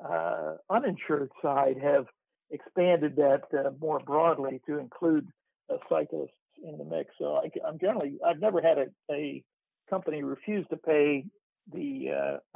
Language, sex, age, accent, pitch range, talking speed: English, male, 60-79, American, 145-185 Hz, 150 wpm